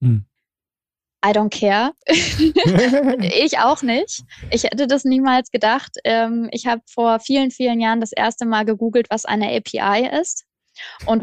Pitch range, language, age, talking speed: 210-240 Hz, German, 20-39, 140 wpm